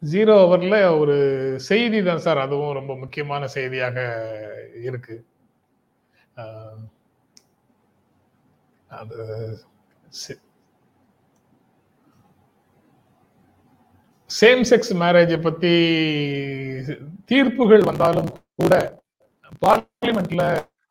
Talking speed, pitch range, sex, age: 50 wpm, 135-190 Hz, male, 30-49